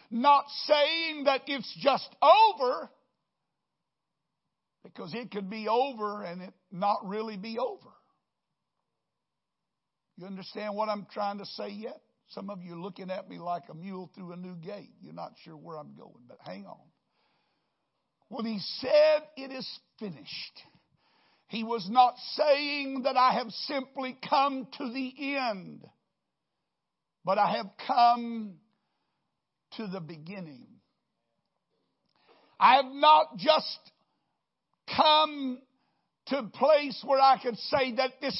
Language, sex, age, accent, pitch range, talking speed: English, male, 60-79, American, 210-280 Hz, 135 wpm